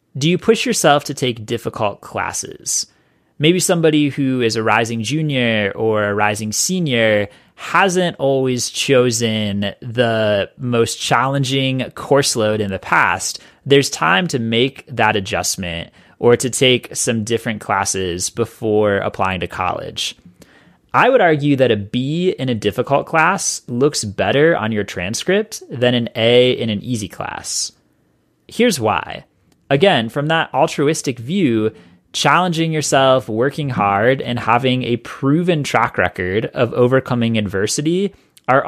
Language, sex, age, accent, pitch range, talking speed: English, male, 30-49, American, 110-145 Hz, 140 wpm